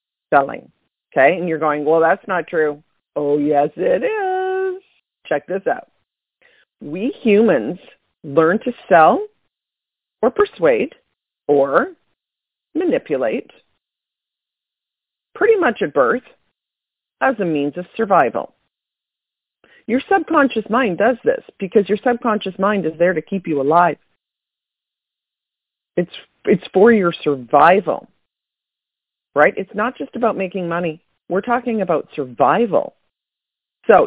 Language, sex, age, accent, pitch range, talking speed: English, female, 40-59, American, 165-255 Hz, 115 wpm